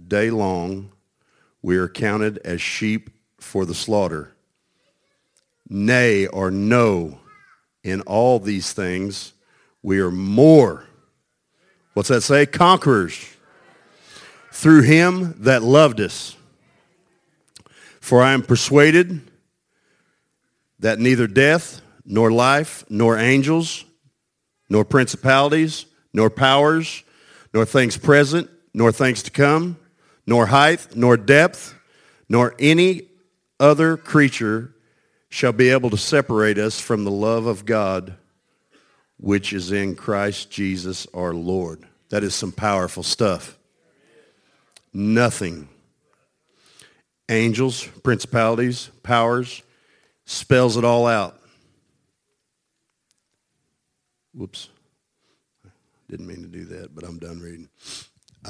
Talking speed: 105 wpm